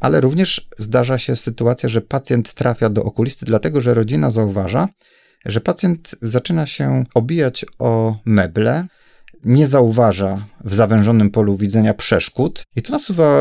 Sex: male